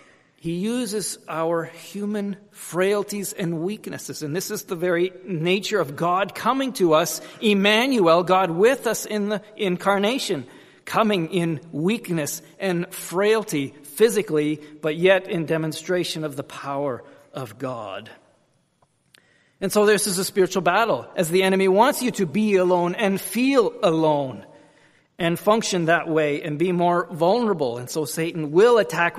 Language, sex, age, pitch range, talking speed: English, male, 40-59, 155-200 Hz, 145 wpm